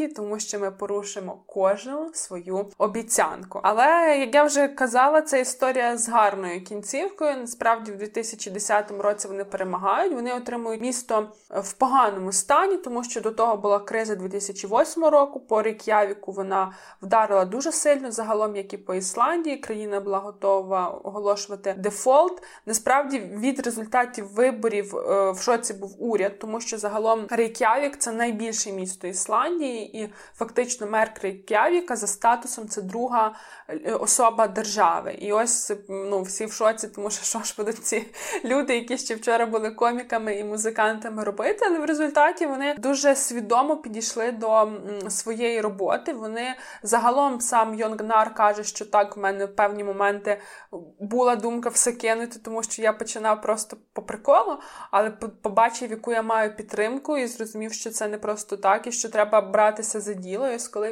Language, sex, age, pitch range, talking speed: Ukrainian, female, 20-39, 205-245 Hz, 150 wpm